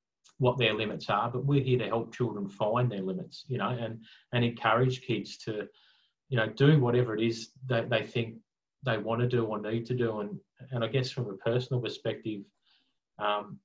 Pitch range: 110-130 Hz